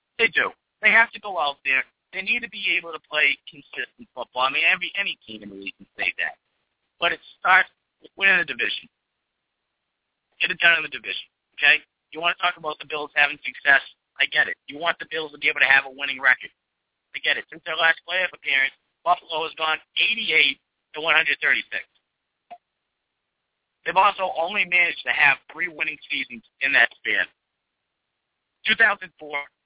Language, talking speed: English, 190 wpm